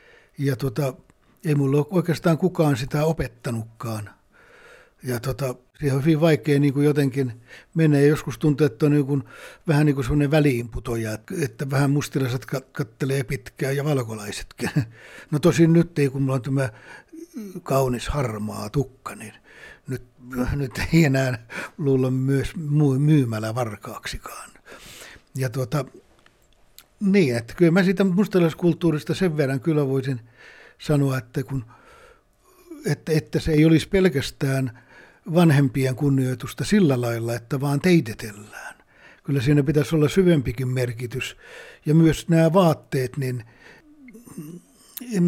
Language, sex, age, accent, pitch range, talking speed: Finnish, male, 60-79, native, 130-165 Hz, 130 wpm